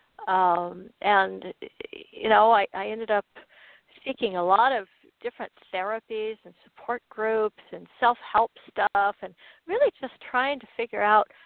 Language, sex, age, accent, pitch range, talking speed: English, female, 60-79, American, 205-290 Hz, 140 wpm